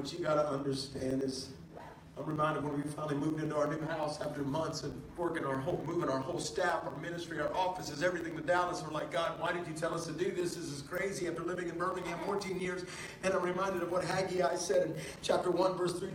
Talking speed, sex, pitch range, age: 240 wpm, male, 180-230 Hz, 50-69